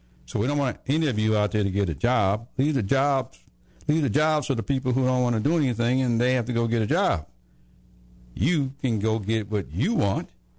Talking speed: 245 wpm